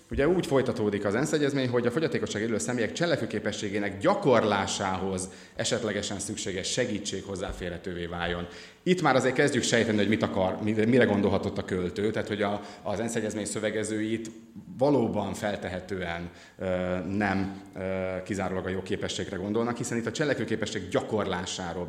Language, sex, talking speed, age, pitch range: Hungarian, male, 135 wpm, 30-49, 95-115 Hz